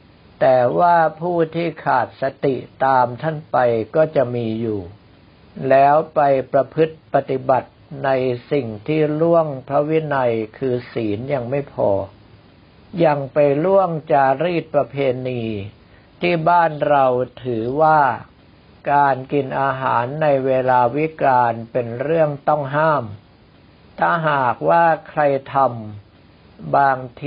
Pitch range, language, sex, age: 125-155 Hz, Thai, male, 60-79